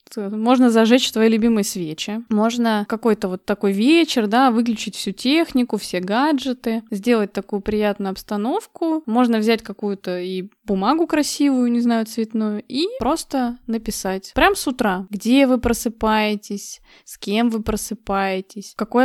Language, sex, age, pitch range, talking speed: Russian, female, 20-39, 205-255 Hz, 140 wpm